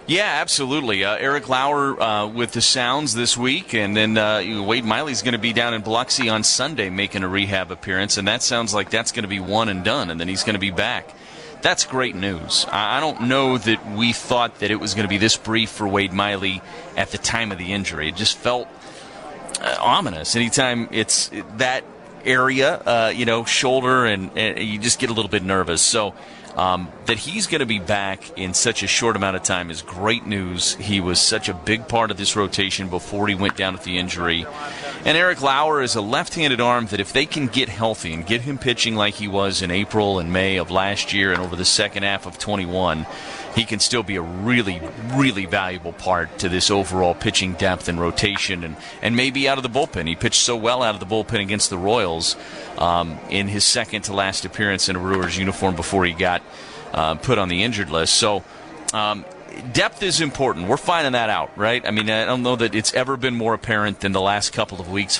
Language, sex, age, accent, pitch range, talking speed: English, male, 30-49, American, 95-120 Hz, 225 wpm